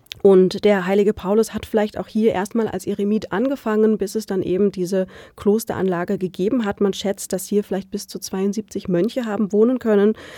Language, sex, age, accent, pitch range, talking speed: German, female, 30-49, German, 185-210 Hz, 185 wpm